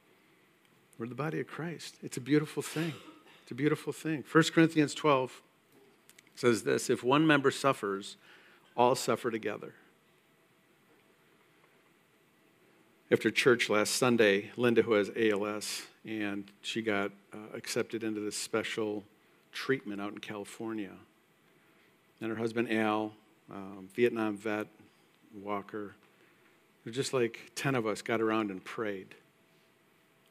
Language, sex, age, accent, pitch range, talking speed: English, male, 50-69, American, 105-155 Hz, 125 wpm